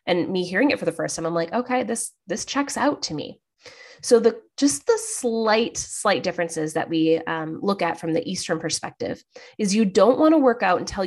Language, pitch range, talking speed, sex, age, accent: English, 170-230 Hz, 220 wpm, female, 20-39, American